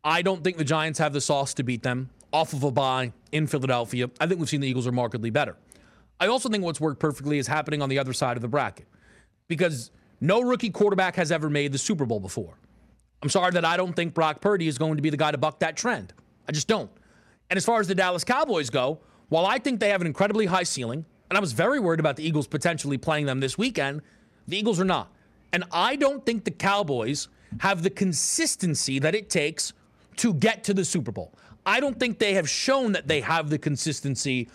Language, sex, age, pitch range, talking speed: English, male, 30-49, 145-205 Hz, 235 wpm